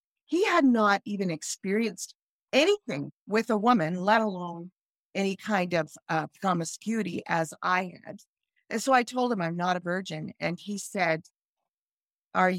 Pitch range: 175-220 Hz